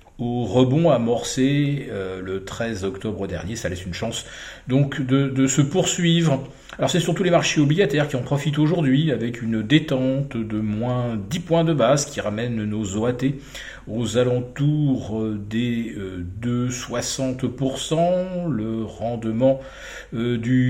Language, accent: French, French